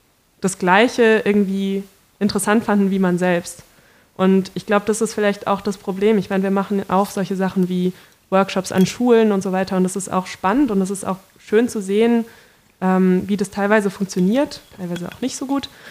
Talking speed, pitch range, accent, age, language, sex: 200 wpm, 185-205 Hz, German, 20-39, German, female